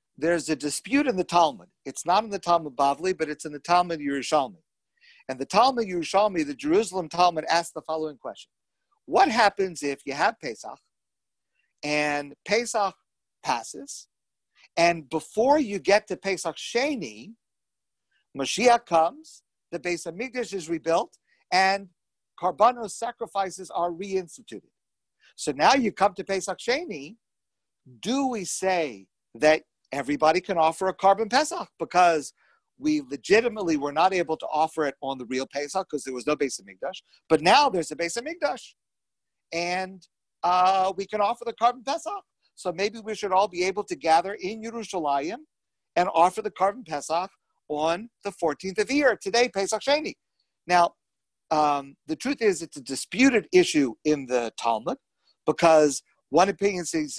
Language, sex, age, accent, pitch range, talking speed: English, male, 50-69, American, 160-225 Hz, 155 wpm